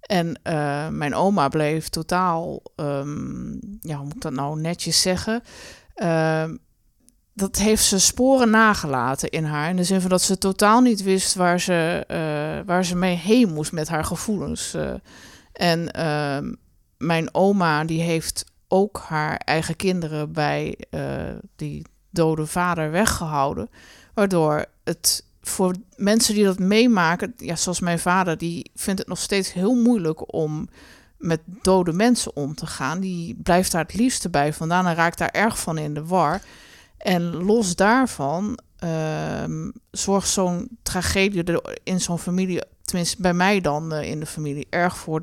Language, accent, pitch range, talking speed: Dutch, Dutch, 160-195 Hz, 160 wpm